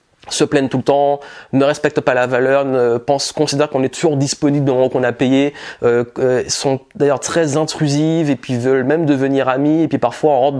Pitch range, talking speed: 120-150 Hz, 215 wpm